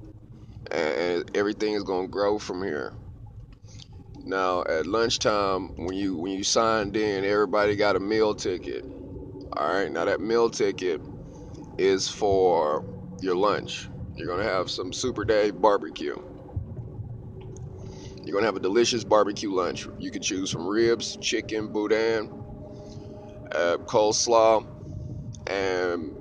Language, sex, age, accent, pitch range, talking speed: English, male, 30-49, American, 105-125 Hz, 125 wpm